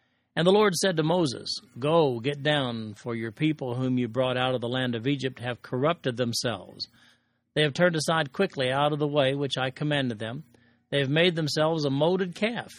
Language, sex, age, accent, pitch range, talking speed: English, male, 50-69, American, 125-170 Hz, 205 wpm